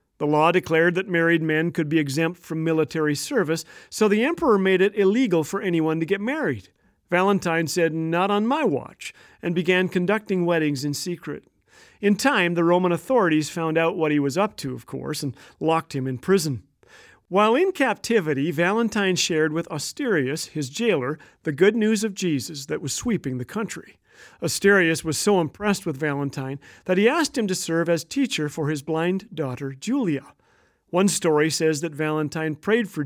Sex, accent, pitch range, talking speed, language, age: male, American, 150-195 Hz, 180 wpm, English, 40-59